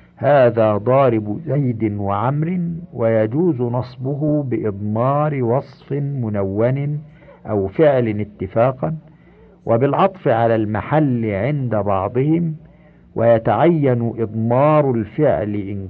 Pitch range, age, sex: 110-150 Hz, 50-69, male